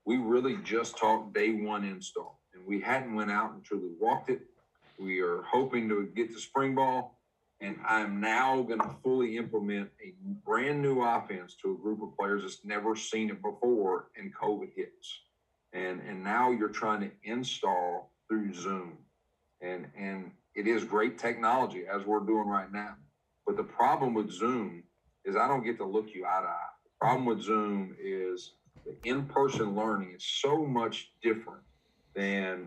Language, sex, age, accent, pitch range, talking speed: English, male, 50-69, American, 100-135 Hz, 175 wpm